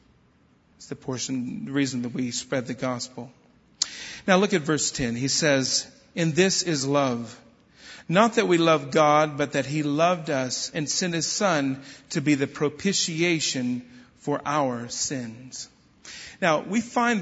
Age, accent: 40-59, American